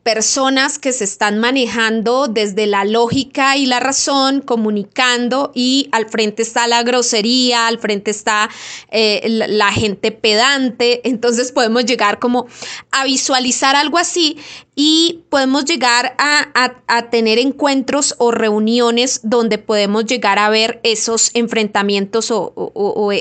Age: 20-39